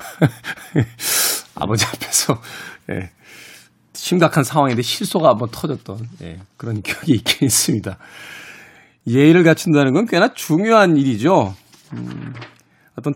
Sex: male